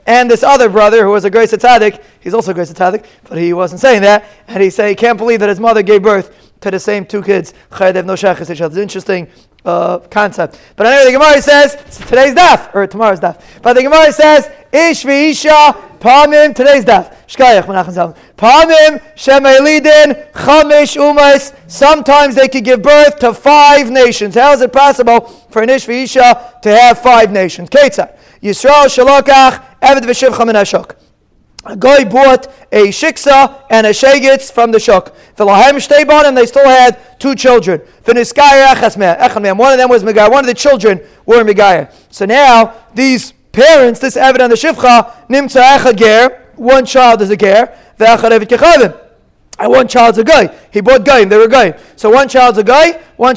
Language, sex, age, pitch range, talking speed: English, male, 30-49, 215-275 Hz, 165 wpm